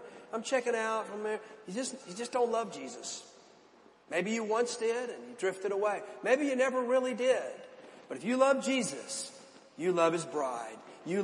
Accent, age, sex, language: American, 40-59, male, English